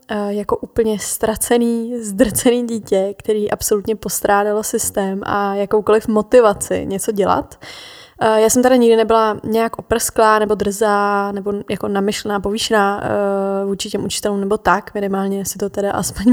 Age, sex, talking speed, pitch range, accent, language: 20-39, female, 135 wpm, 205-225 Hz, native, Czech